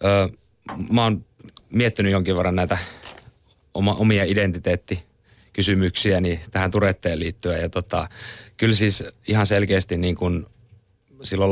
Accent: native